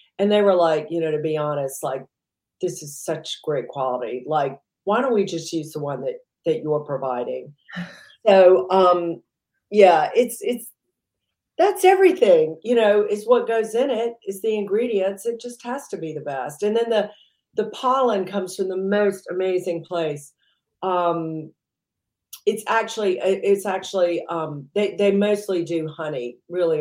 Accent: American